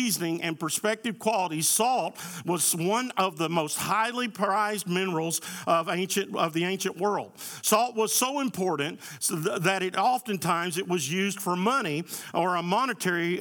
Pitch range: 175-215 Hz